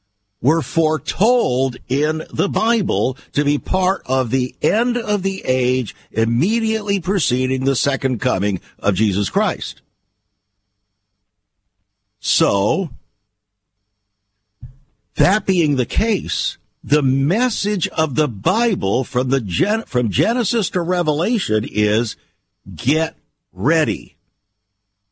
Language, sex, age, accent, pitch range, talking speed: English, male, 60-79, American, 100-155 Hz, 100 wpm